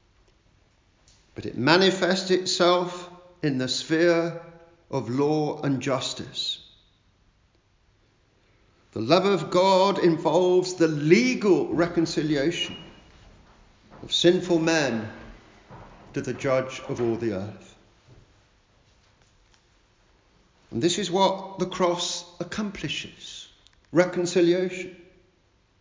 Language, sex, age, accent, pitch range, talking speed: English, male, 50-69, British, 110-180 Hz, 85 wpm